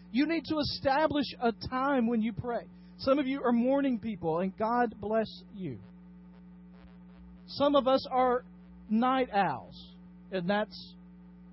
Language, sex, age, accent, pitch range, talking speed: English, male, 40-59, American, 180-275 Hz, 140 wpm